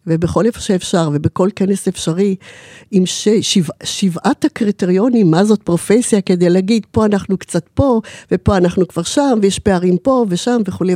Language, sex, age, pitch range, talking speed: Hebrew, female, 50-69, 160-200 Hz, 160 wpm